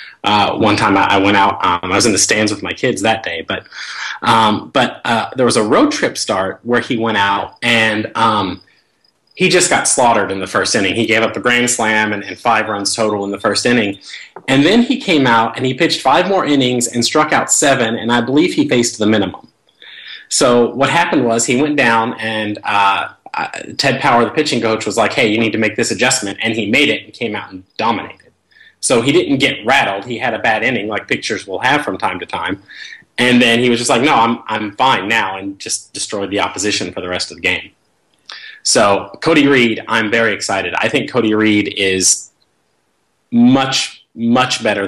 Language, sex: English, male